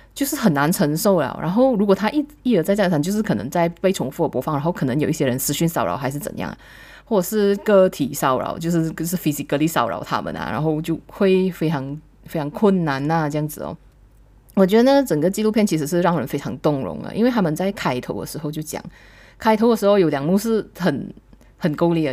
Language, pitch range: Chinese, 145-205 Hz